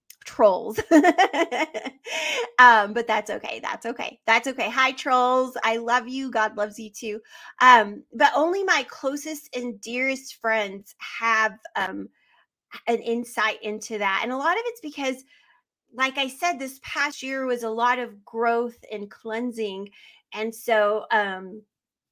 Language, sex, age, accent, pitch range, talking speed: English, female, 30-49, American, 215-270 Hz, 145 wpm